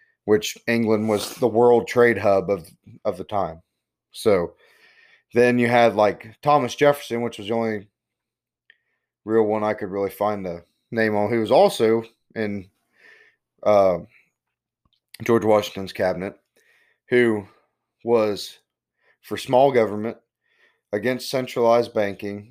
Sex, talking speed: male, 125 wpm